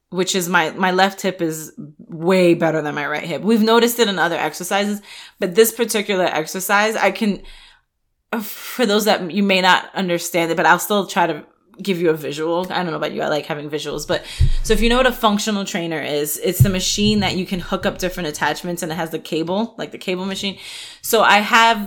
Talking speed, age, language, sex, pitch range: 230 wpm, 20-39, English, female, 170-210 Hz